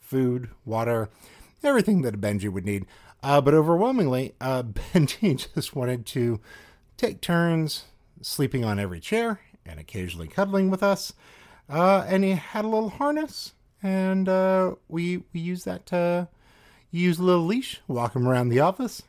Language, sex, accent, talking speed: English, male, American, 155 wpm